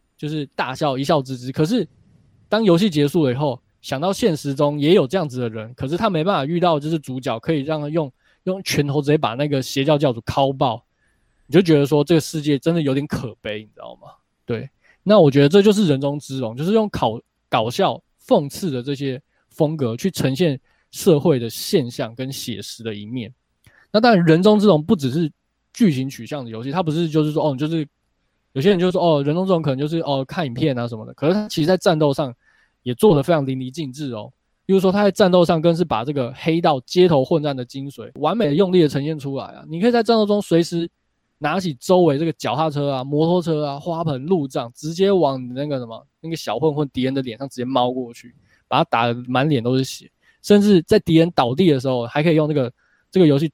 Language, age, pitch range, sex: Chinese, 20-39, 130-170 Hz, male